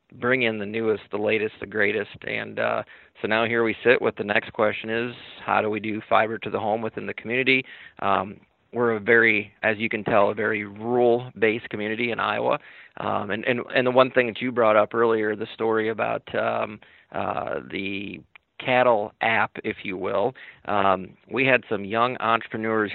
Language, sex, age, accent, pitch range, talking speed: English, male, 40-59, American, 105-120 Hz, 195 wpm